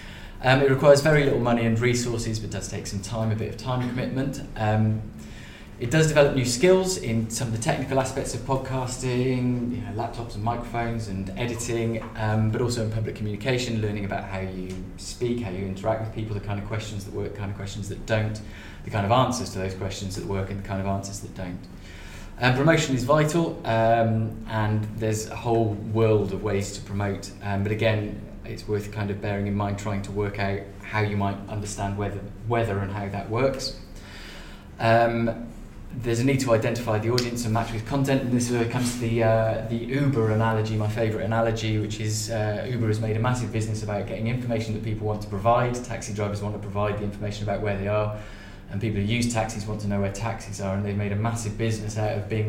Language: English